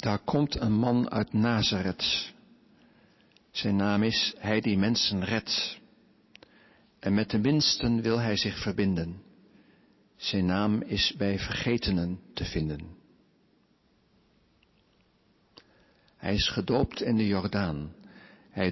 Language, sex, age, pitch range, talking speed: Dutch, male, 50-69, 95-110 Hz, 110 wpm